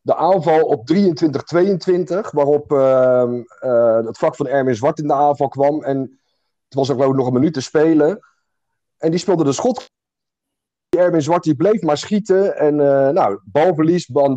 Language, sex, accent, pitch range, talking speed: Dutch, male, Belgian, 125-155 Hz, 165 wpm